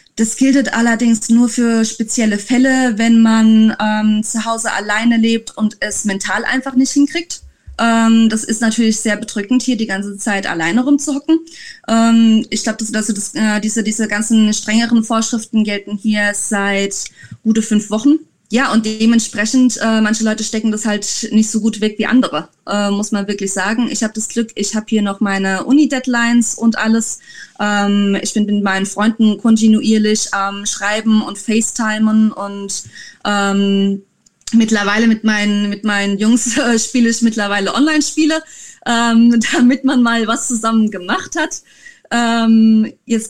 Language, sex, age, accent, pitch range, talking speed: German, female, 20-39, German, 205-235 Hz, 155 wpm